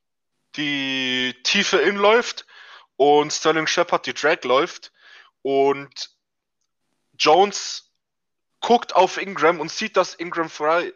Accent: German